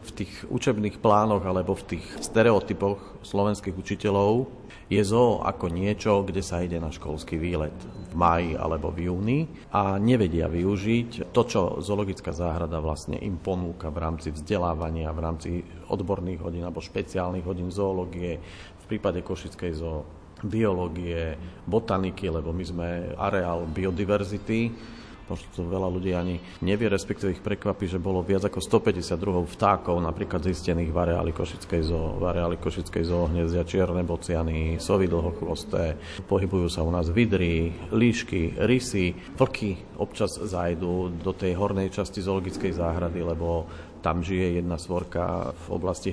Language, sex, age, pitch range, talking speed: Slovak, male, 40-59, 85-100 Hz, 140 wpm